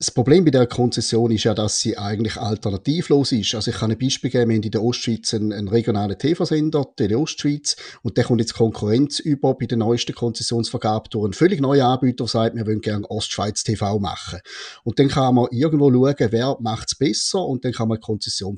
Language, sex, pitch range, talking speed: German, male, 110-135 Hz, 225 wpm